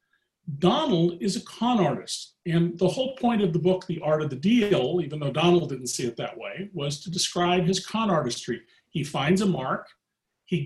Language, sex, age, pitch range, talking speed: English, male, 40-59, 160-195 Hz, 205 wpm